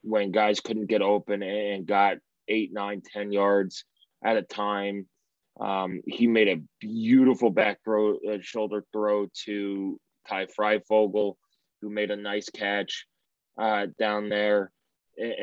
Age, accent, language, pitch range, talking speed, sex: 20-39, American, English, 95-110 Hz, 145 wpm, male